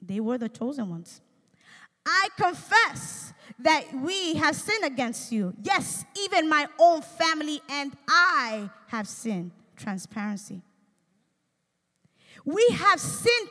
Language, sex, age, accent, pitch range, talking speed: Spanish, female, 20-39, American, 250-390 Hz, 115 wpm